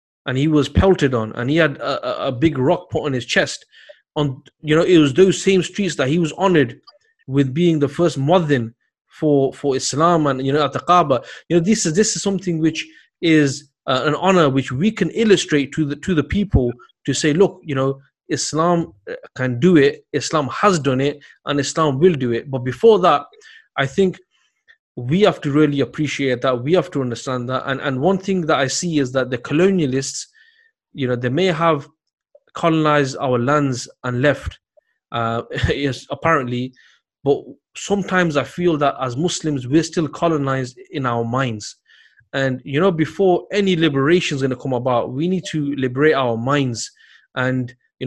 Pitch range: 135-175 Hz